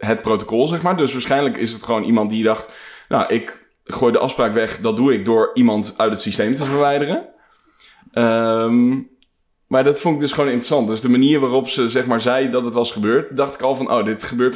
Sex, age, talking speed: male, 20-39, 225 wpm